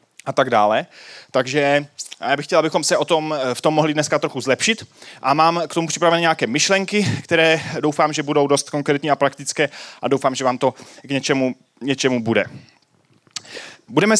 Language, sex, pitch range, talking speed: Czech, male, 125-160 Hz, 180 wpm